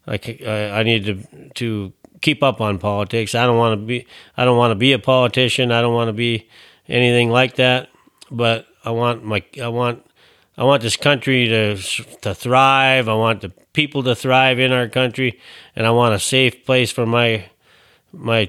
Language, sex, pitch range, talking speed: English, male, 110-130 Hz, 195 wpm